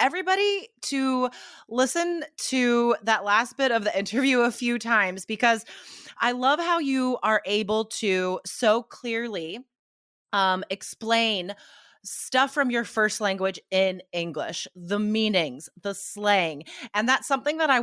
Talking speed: 140 wpm